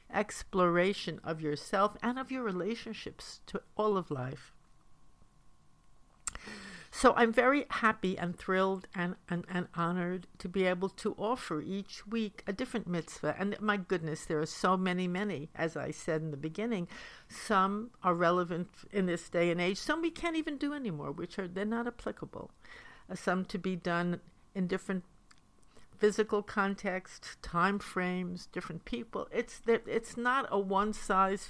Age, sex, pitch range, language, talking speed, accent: 60-79, female, 175-220 Hz, English, 160 wpm, American